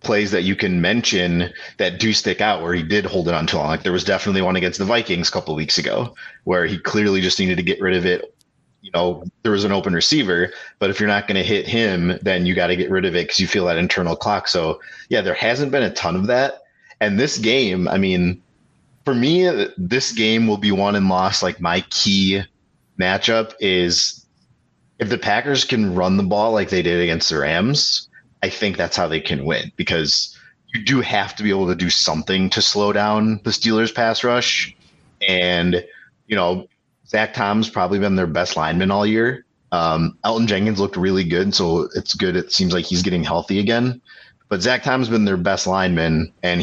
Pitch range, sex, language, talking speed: 90-110 Hz, male, English, 220 wpm